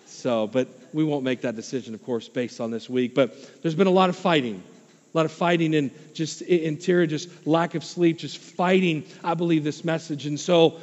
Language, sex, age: English, male, 40-59